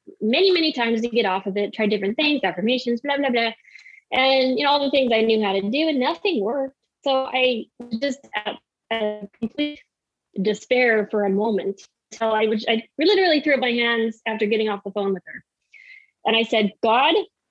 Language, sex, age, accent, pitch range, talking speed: English, female, 20-39, American, 210-270 Hz, 200 wpm